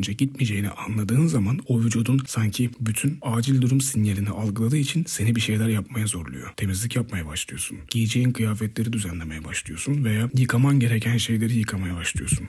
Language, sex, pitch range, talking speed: Turkish, male, 100-130 Hz, 145 wpm